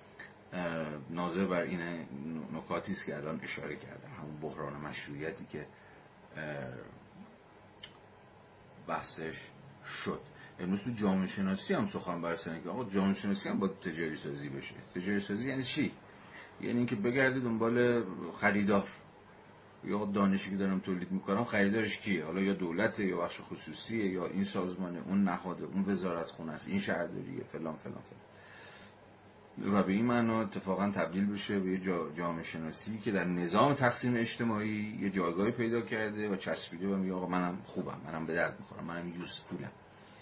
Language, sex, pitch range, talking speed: Persian, male, 90-110 Hz, 155 wpm